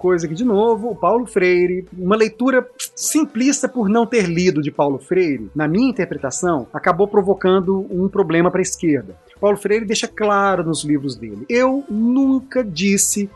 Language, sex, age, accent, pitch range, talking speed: Portuguese, male, 30-49, Brazilian, 175-230 Hz, 165 wpm